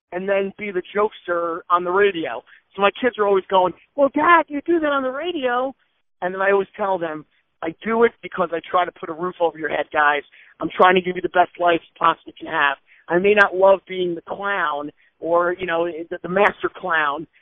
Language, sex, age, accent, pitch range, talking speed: English, male, 50-69, American, 170-205 Hz, 230 wpm